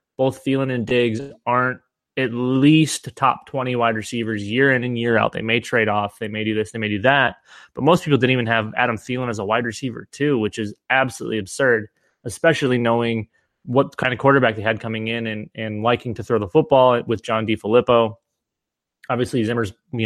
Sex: male